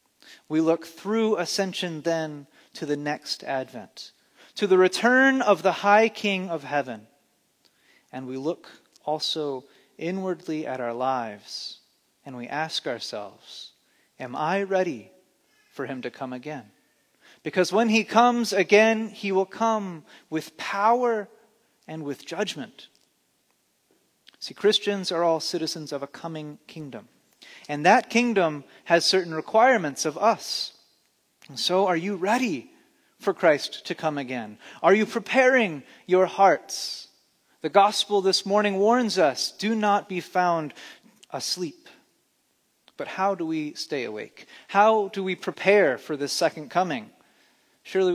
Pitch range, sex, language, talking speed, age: 160-215 Hz, male, English, 135 wpm, 30-49